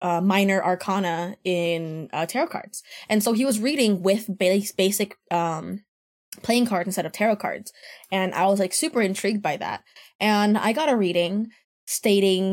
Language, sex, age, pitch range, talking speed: English, female, 10-29, 175-215 Hz, 170 wpm